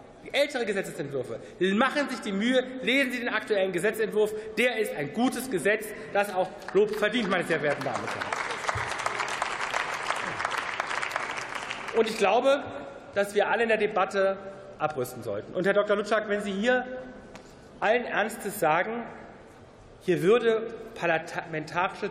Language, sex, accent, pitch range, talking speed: German, male, German, 190-245 Hz, 140 wpm